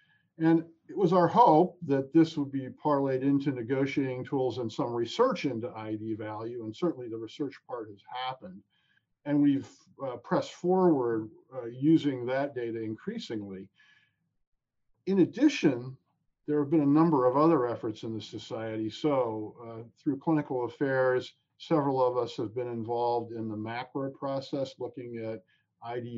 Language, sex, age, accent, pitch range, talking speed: English, male, 50-69, American, 115-160 Hz, 155 wpm